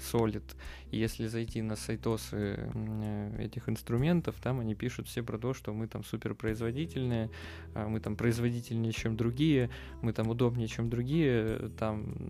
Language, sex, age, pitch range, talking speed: Russian, male, 20-39, 110-120 Hz, 135 wpm